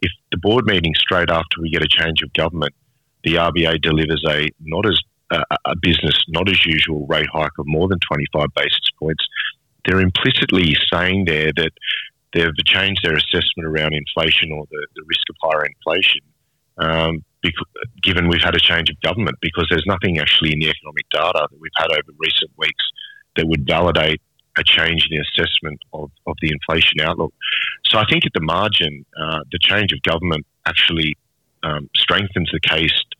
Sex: male